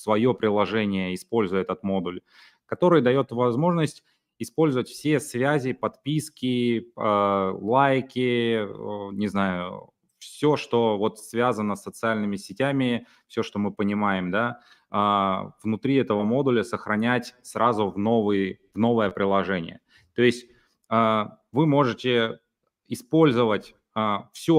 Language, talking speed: Russian, 105 wpm